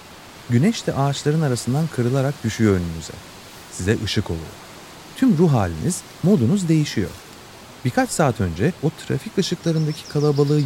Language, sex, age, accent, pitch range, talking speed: Turkish, male, 30-49, native, 100-150 Hz, 125 wpm